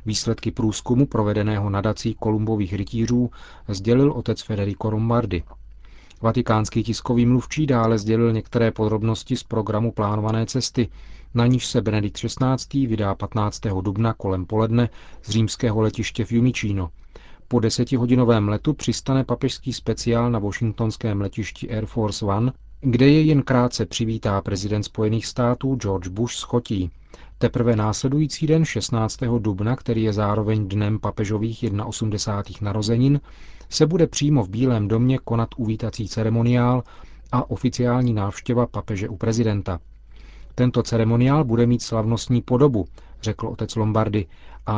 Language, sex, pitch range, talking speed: Czech, male, 105-125 Hz, 130 wpm